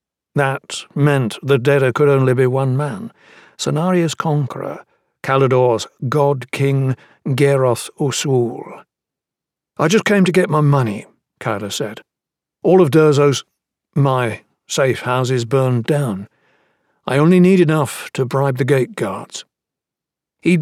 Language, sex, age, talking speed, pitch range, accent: English, male, 60-79, 120 wpm, 125-160 Hz, British